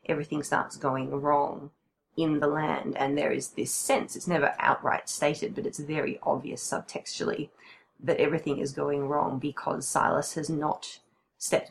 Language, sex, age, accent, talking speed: English, female, 20-39, Australian, 160 wpm